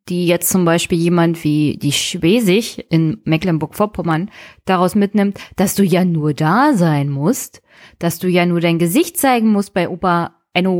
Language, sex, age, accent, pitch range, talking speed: German, female, 20-39, German, 170-205 Hz, 165 wpm